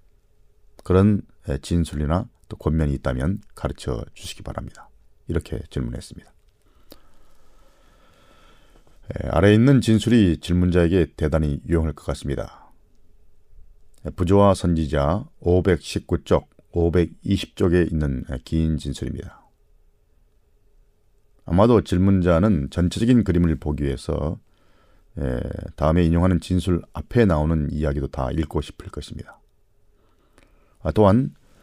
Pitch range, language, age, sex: 75-100 Hz, Korean, 40-59, male